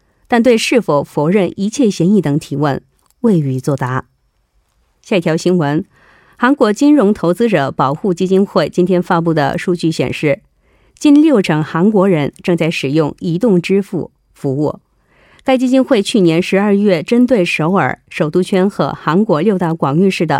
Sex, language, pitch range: female, Korean, 160-220 Hz